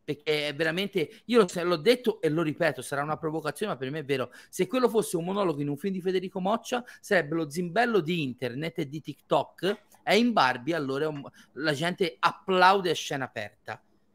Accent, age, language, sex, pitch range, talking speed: native, 40-59, Italian, male, 150-210 Hz, 190 wpm